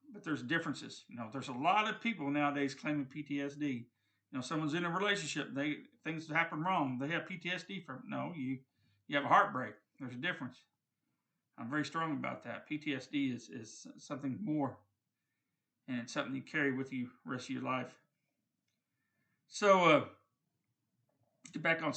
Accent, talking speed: American, 170 wpm